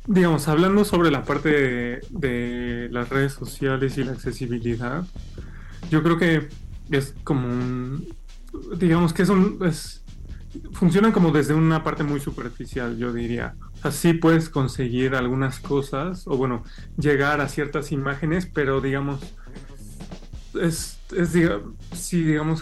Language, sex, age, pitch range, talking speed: Spanish, male, 20-39, 125-160 Hz, 145 wpm